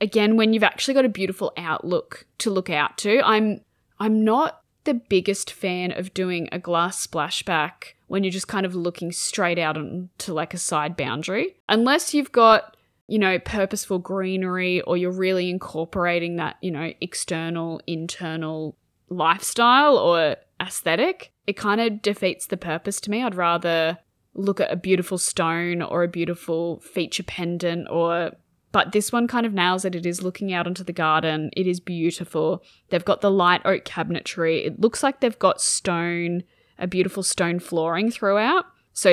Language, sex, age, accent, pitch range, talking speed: English, female, 20-39, Australian, 170-205 Hz, 170 wpm